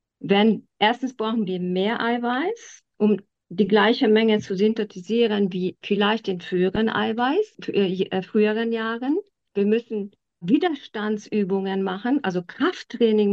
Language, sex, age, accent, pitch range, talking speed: German, female, 50-69, German, 195-240 Hz, 120 wpm